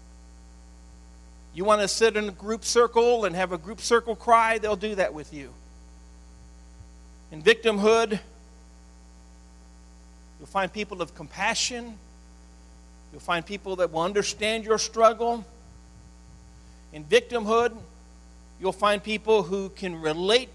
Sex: male